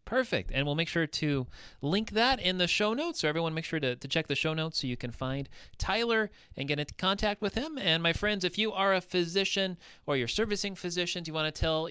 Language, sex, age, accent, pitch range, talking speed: English, male, 30-49, American, 130-185 Hz, 245 wpm